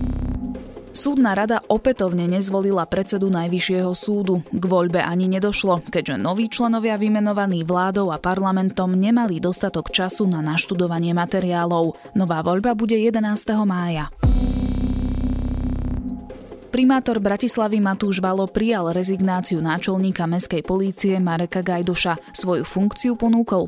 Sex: female